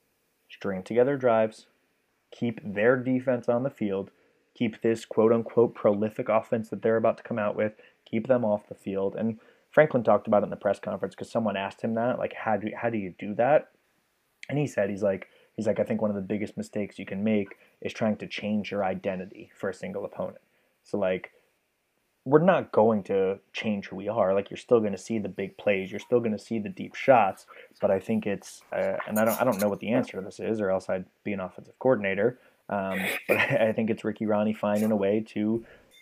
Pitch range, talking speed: 100-115 Hz, 230 wpm